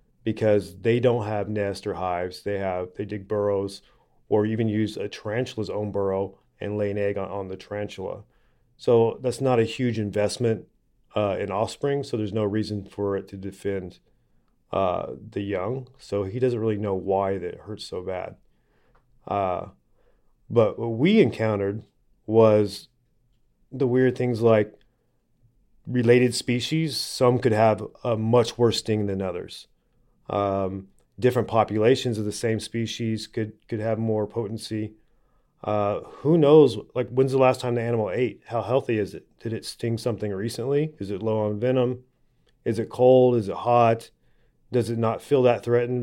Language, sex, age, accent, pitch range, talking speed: English, male, 30-49, American, 105-120 Hz, 165 wpm